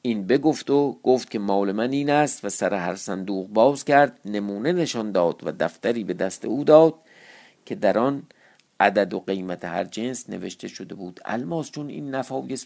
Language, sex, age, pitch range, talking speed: Persian, male, 50-69, 105-140 Hz, 185 wpm